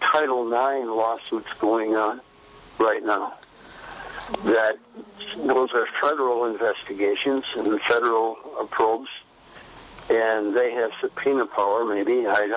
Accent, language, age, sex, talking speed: American, English, 60-79, male, 105 wpm